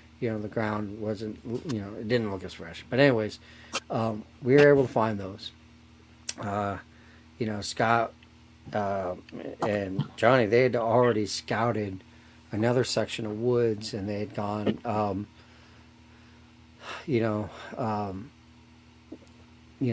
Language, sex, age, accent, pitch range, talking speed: English, male, 40-59, American, 100-120 Hz, 135 wpm